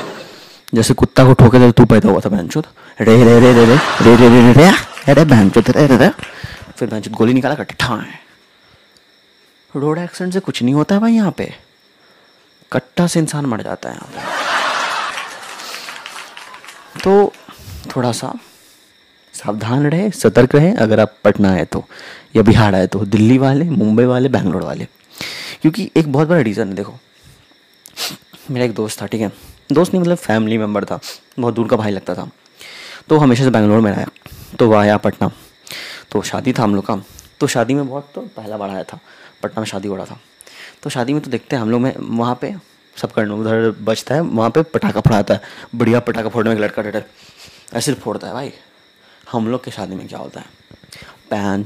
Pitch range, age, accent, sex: 105-135 Hz, 20-39, native, male